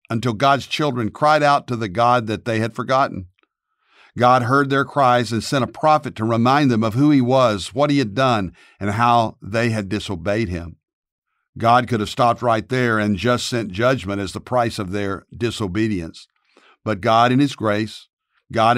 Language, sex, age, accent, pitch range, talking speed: English, male, 50-69, American, 110-130 Hz, 190 wpm